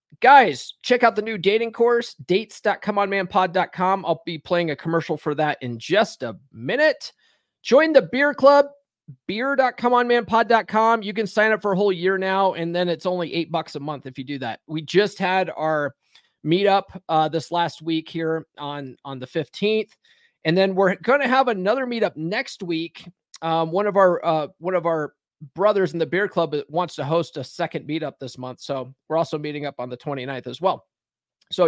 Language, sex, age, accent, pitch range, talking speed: English, male, 30-49, American, 155-200 Hz, 190 wpm